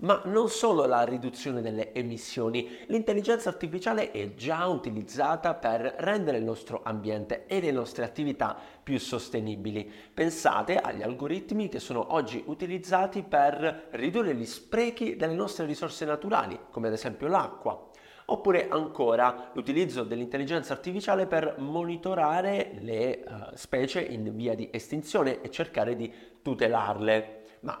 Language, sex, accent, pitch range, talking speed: Italian, male, native, 115-165 Hz, 130 wpm